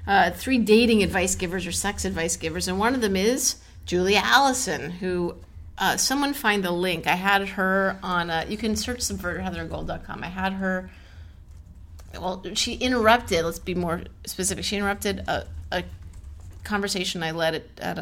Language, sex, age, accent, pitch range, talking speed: English, female, 30-49, American, 165-200 Hz, 170 wpm